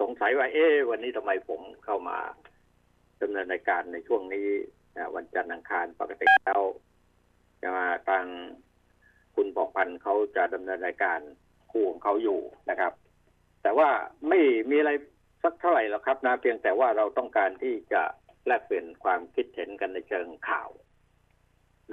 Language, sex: Thai, male